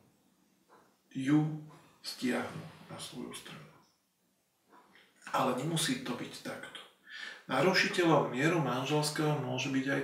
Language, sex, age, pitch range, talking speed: Slovak, male, 40-59, 130-165 Hz, 95 wpm